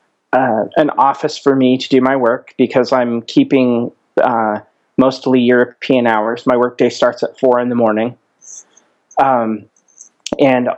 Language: English